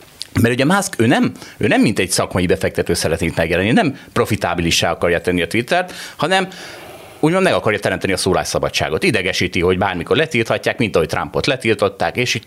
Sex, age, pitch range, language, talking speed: male, 30-49, 100-145 Hz, Hungarian, 175 wpm